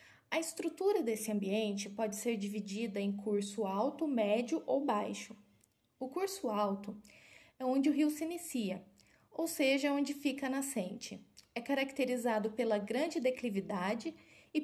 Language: Portuguese